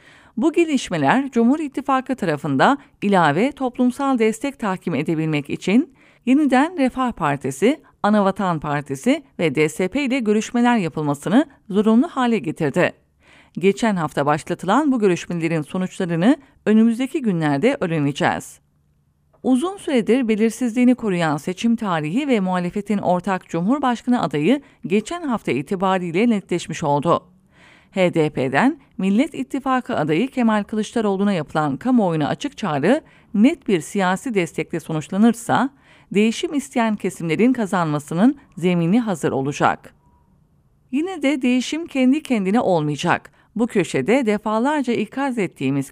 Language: English